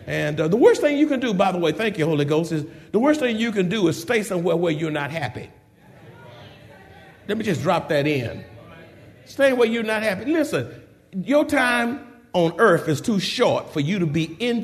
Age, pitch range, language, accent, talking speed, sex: 50-69, 150-220 Hz, English, American, 215 wpm, male